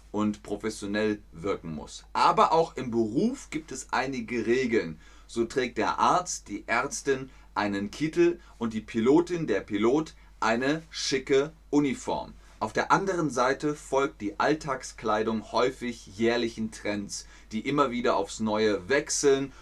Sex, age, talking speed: male, 30-49, 135 wpm